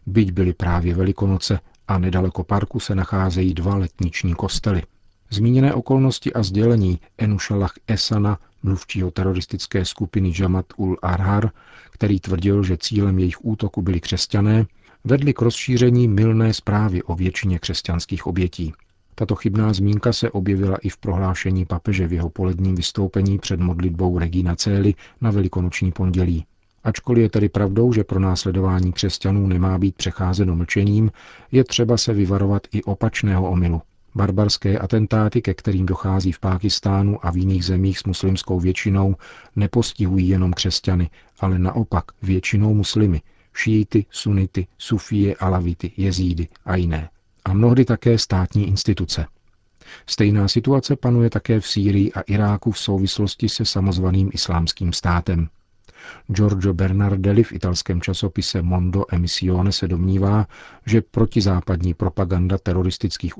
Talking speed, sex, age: 130 wpm, male, 50-69